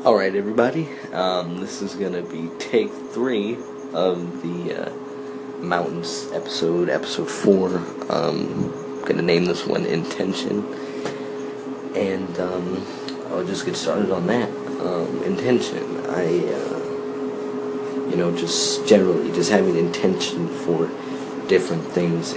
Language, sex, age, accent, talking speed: English, male, 30-49, American, 120 wpm